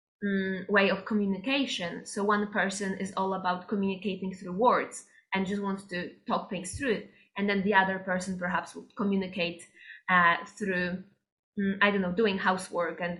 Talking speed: 165 wpm